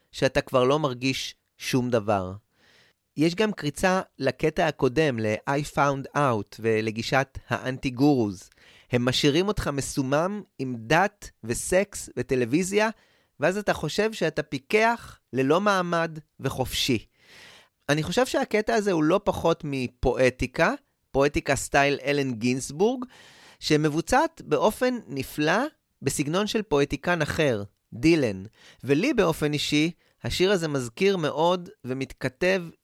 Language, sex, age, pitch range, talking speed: Hebrew, male, 30-49, 130-180 Hz, 110 wpm